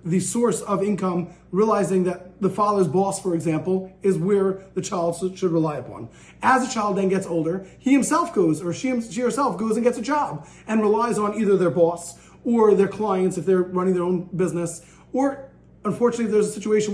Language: English